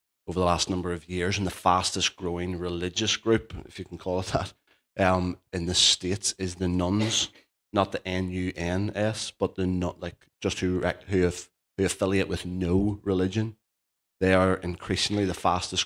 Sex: male